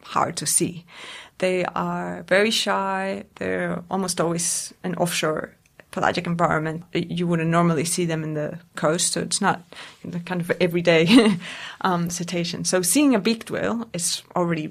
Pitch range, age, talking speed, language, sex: 170-210 Hz, 30-49, 155 wpm, English, female